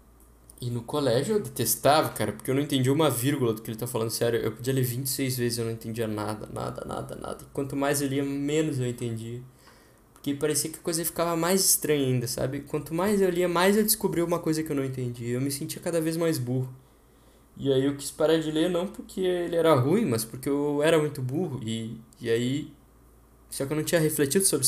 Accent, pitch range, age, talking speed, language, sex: Brazilian, 115-140 Hz, 10-29, 235 wpm, Portuguese, male